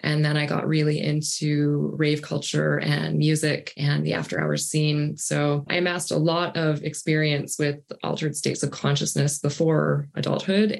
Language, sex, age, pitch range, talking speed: English, female, 20-39, 130-160 Hz, 160 wpm